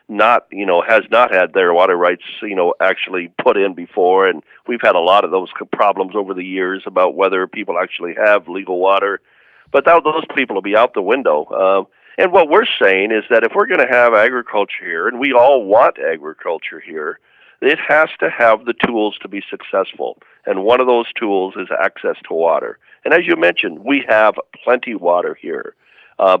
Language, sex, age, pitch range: English, male, 50-69, 105-150 Hz